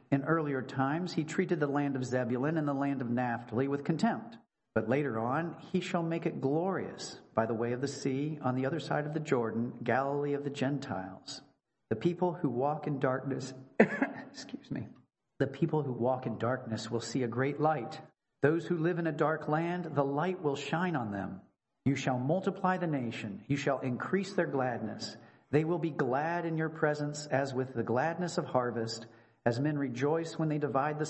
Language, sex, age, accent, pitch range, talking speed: English, male, 40-59, American, 125-160 Hz, 200 wpm